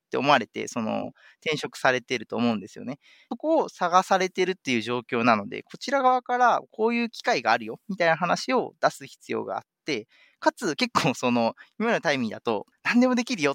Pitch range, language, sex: 150-240 Hz, Japanese, male